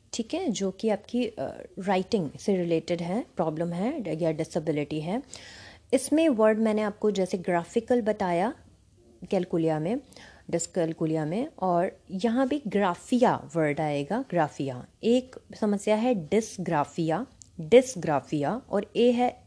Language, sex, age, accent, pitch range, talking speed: Hindi, female, 30-49, native, 175-245 Hz, 130 wpm